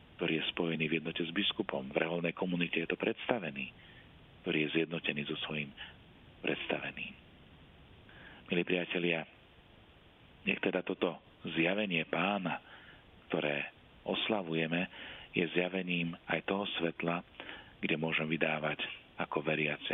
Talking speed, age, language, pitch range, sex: 115 wpm, 40-59, Slovak, 80-90 Hz, male